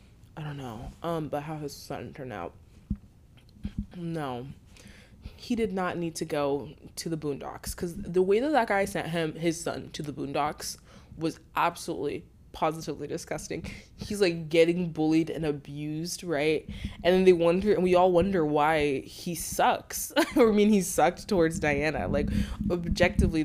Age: 20-39